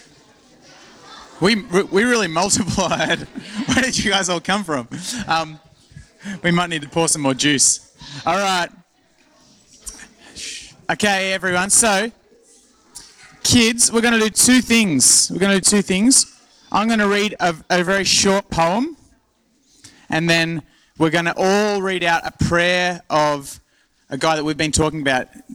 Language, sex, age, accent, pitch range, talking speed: English, male, 30-49, Australian, 130-190 Hz, 150 wpm